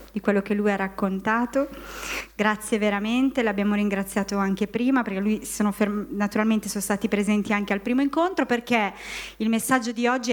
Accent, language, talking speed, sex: native, Italian, 155 wpm, female